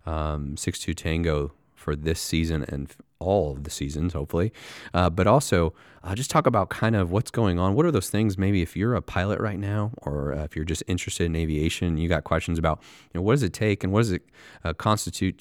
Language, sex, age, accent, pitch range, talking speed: English, male, 30-49, American, 80-100 Hz, 235 wpm